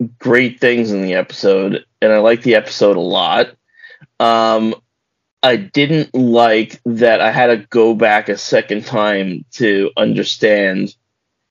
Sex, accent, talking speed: male, American, 140 wpm